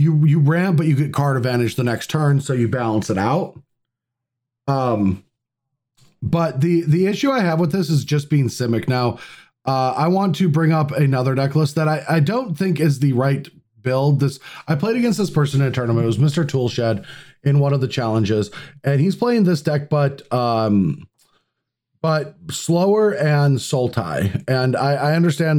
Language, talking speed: English, 190 wpm